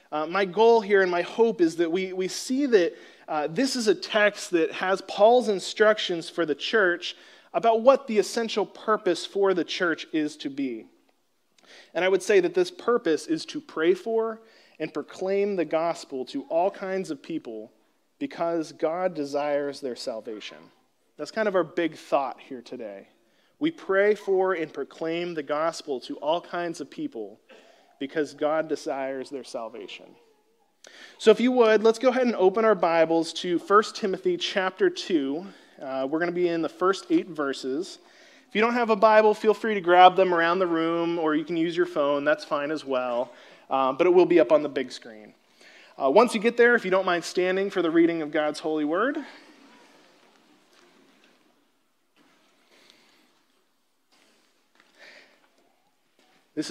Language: English